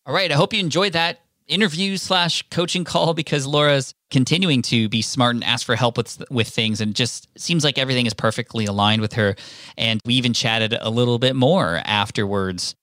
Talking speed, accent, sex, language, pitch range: 200 wpm, American, male, English, 110-130 Hz